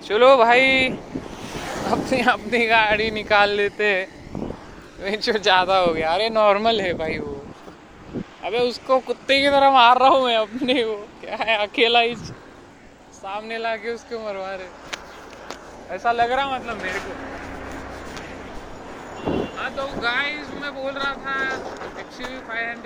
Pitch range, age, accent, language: 210-245 Hz, 20-39, native, Marathi